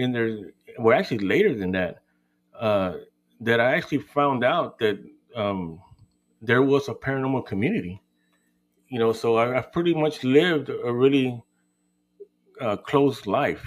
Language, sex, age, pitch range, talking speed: English, male, 30-49, 105-140 Hz, 140 wpm